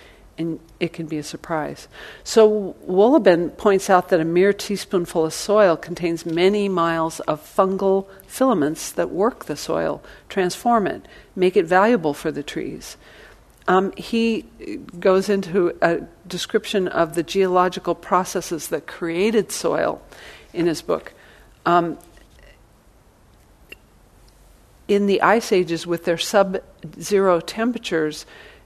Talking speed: 125 wpm